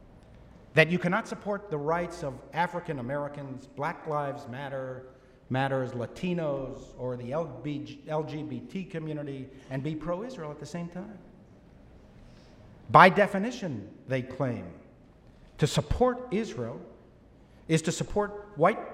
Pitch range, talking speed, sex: 130-175 Hz, 110 wpm, male